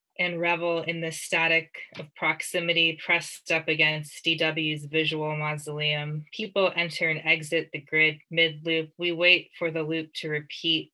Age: 20-39